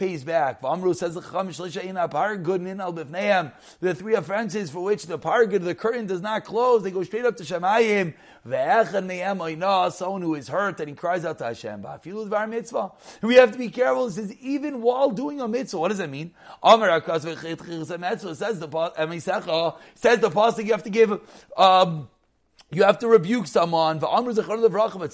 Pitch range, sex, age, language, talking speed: 180-250 Hz, male, 30-49, English, 150 wpm